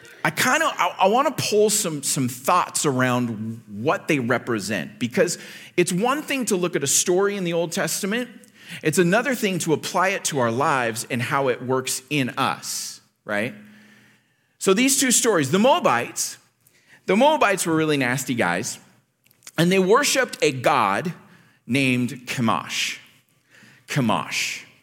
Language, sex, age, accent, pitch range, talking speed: English, male, 40-59, American, 125-185 Hz, 150 wpm